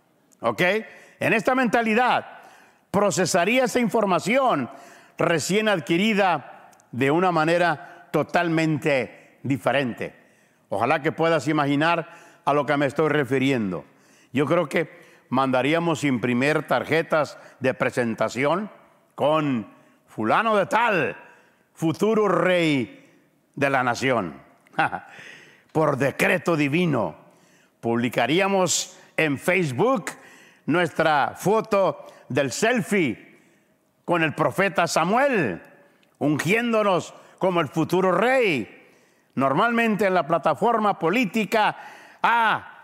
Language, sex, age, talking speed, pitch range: English, male, 60-79, 90 wpm, 155-205 Hz